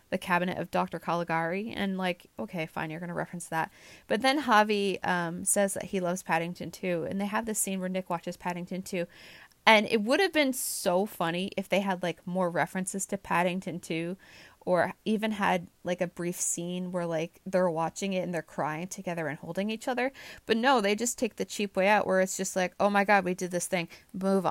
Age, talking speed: 20-39, 225 wpm